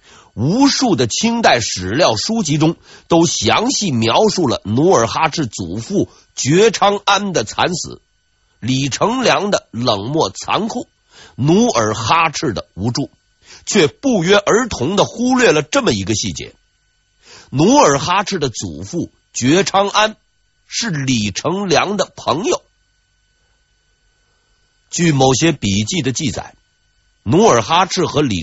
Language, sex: Chinese, male